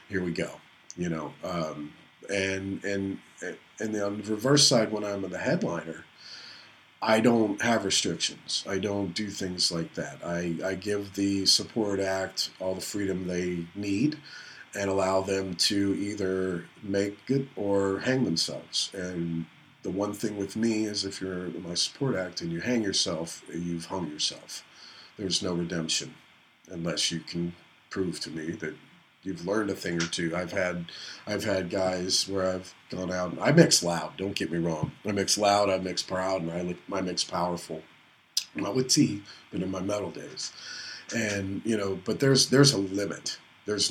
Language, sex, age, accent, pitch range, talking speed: English, male, 40-59, American, 85-100 Hz, 175 wpm